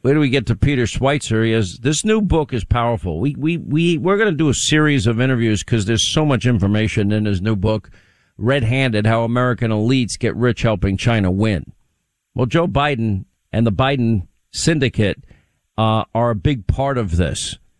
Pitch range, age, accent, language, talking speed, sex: 115-160 Hz, 50-69, American, English, 190 wpm, male